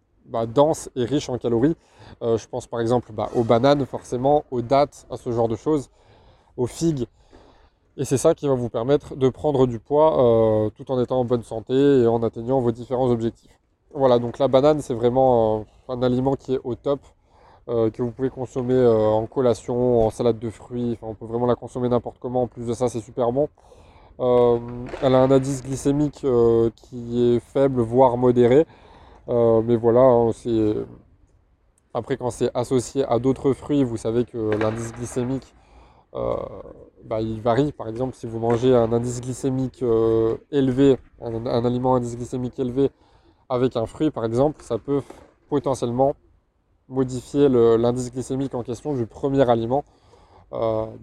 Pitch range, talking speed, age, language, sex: 115-135 Hz, 180 wpm, 20-39, French, male